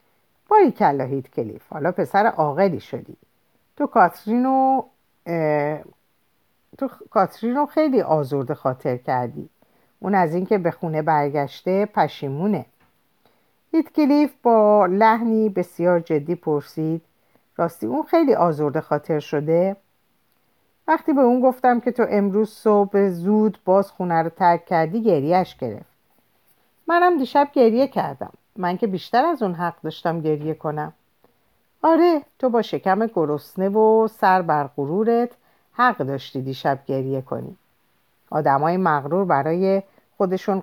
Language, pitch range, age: Persian, 155-230 Hz, 50-69